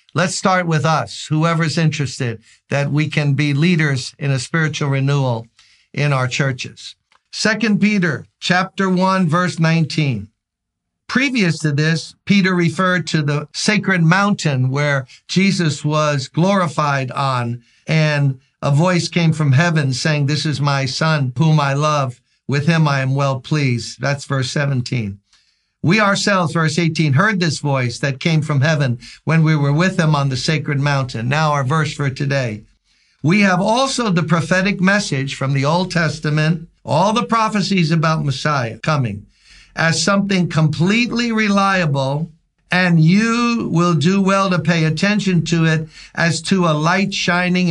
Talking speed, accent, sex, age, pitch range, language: 150 wpm, American, male, 50-69, 140-175 Hz, English